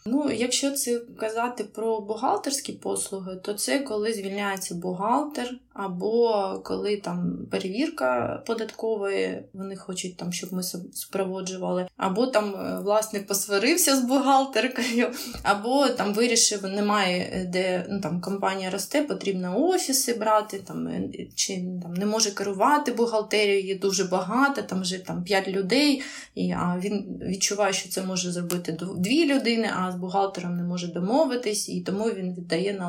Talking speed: 140 wpm